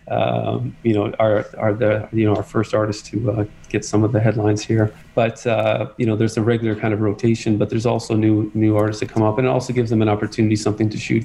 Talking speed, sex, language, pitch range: 255 wpm, male, English, 105-115 Hz